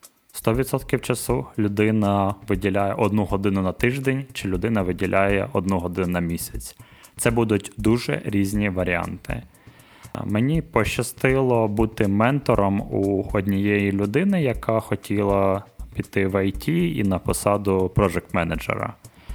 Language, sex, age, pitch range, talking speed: Ukrainian, male, 20-39, 95-120 Hz, 110 wpm